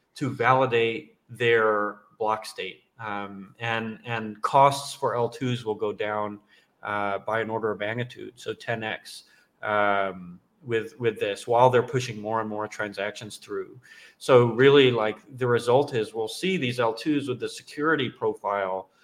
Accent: American